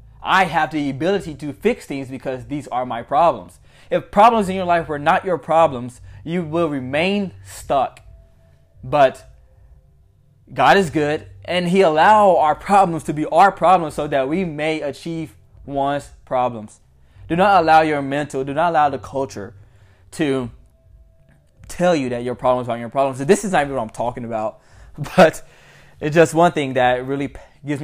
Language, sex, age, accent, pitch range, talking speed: English, male, 20-39, American, 115-145 Hz, 175 wpm